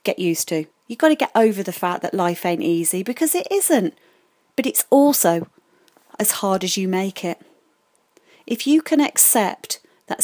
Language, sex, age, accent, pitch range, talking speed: English, female, 30-49, British, 185-230 Hz, 180 wpm